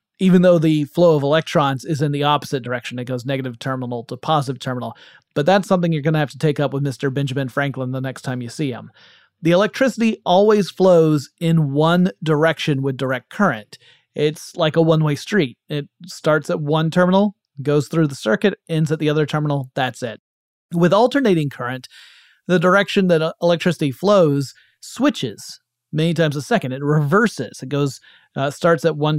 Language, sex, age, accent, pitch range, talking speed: English, male, 30-49, American, 140-180 Hz, 185 wpm